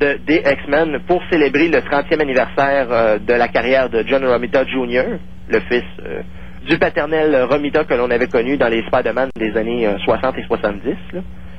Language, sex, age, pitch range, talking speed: French, male, 30-49, 110-150 Hz, 175 wpm